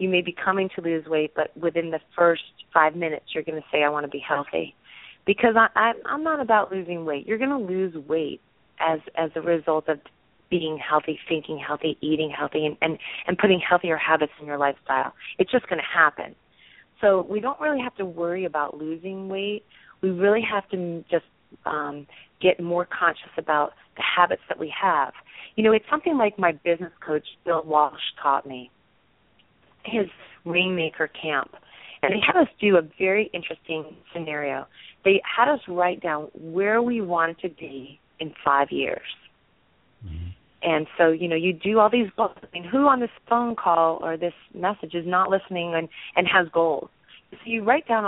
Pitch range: 155-195 Hz